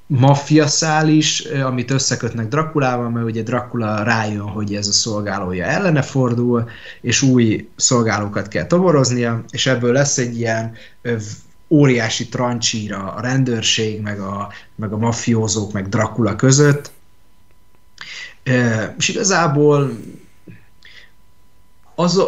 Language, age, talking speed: Hungarian, 30-49, 110 wpm